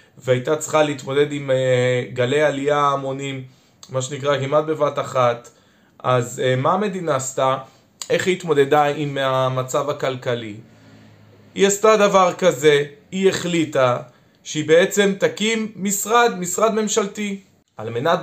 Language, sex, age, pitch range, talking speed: Hebrew, male, 20-39, 130-190 Hz, 105 wpm